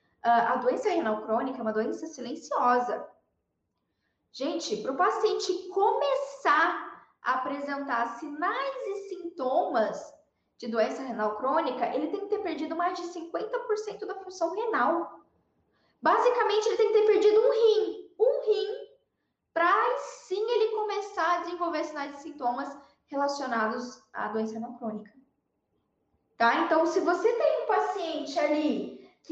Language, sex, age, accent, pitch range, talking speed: Portuguese, female, 10-29, Brazilian, 260-380 Hz, 135 wpm